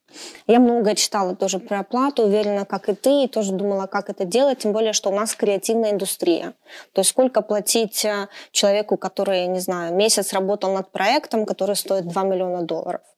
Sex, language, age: female, Ukrainian, 20-39